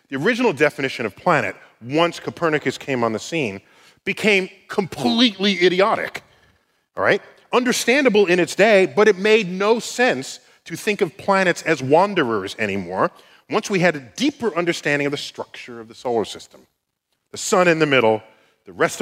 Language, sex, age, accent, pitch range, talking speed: English, male, 40-59, American, 140-230 Hz, 165 wpm